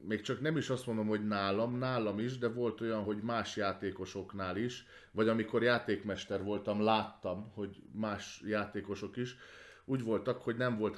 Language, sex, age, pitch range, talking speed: Hungarian, male, 30-49, 100-125 Hz, 170 wpm